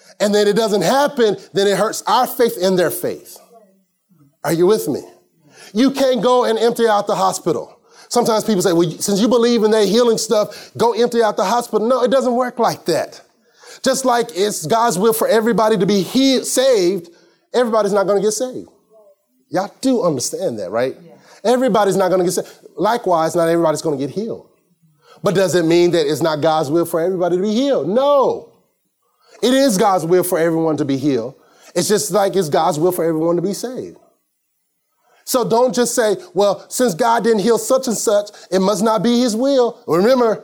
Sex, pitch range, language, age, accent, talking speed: male, 175-235 Hz, English, 30-49, American, 200 wpm